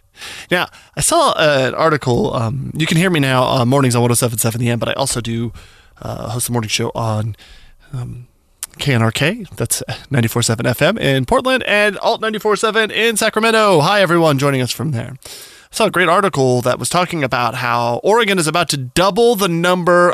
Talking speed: 180 wpm